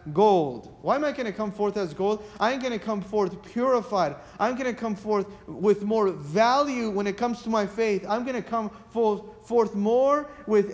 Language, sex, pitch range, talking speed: English, male, 190-235 Hz, 210 wpm